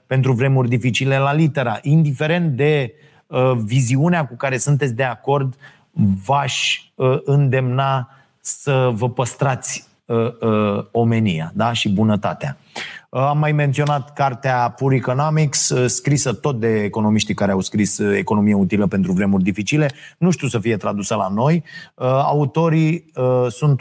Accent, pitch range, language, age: native, 110-140 Hz, Romanian, 30-49